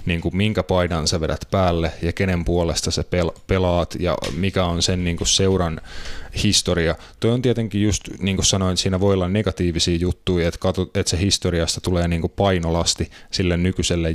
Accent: native